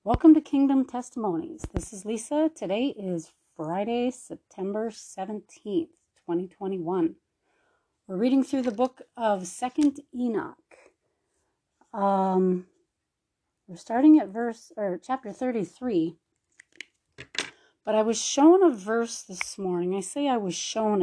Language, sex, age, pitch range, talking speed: English, female, 30-49, 175-250 Hz, 125 wpm